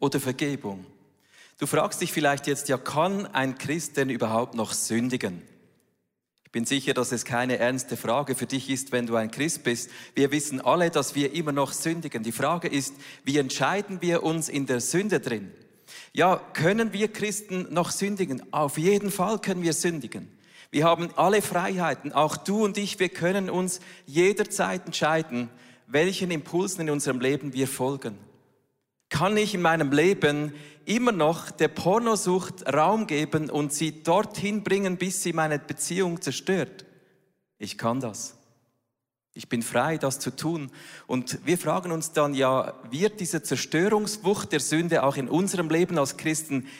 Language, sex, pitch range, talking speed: German, male, 135-185 Hz, 165 wpm